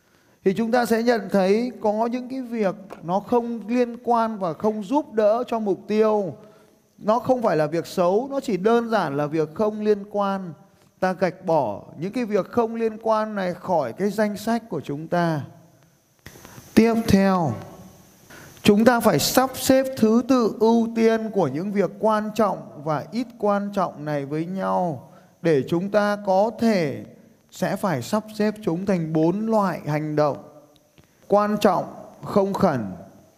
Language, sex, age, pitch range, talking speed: Vietnamese, male, 20-39, 165-215 Hz, 170 wpm